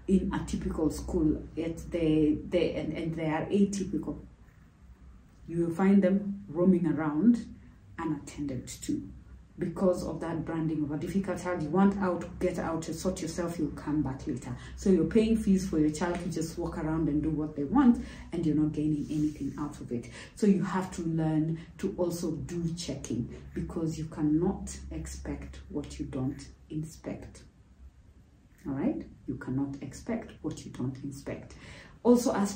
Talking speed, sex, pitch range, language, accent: 170 wpm, female, 155-185 Hz, English, South African